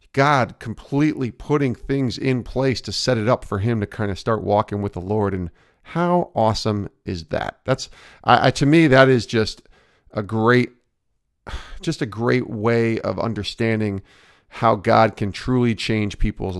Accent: American